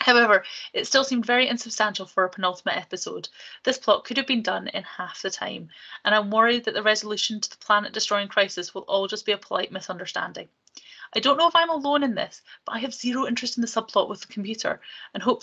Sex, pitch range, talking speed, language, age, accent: female, 200-255 Hz, 230 wpm, English, 30-49, British